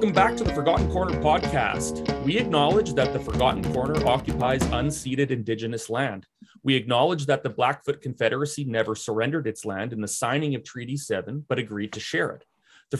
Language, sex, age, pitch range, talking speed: English, male, 30-49, 130-160 Hz, 180 wpm